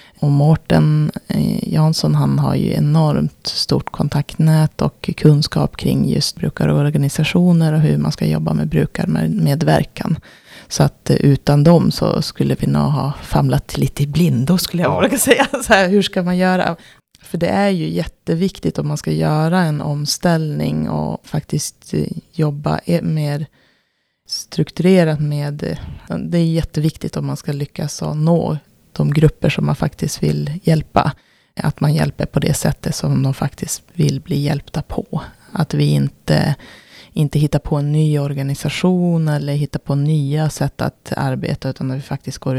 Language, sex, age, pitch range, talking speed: Swedish, female, 20-39, 135-165 Hz, 155 wpm